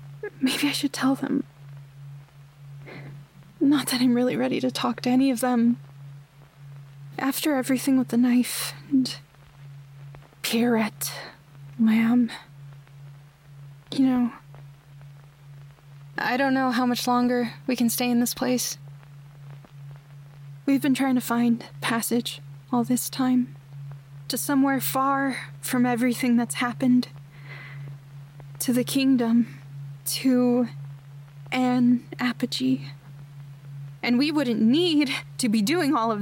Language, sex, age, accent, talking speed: English, female, 20-39, American, 115 wpm